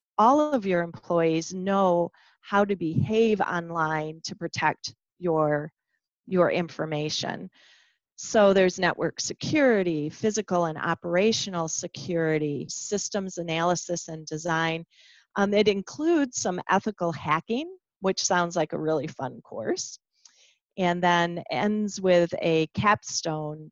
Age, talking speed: 40-59, 115 wpm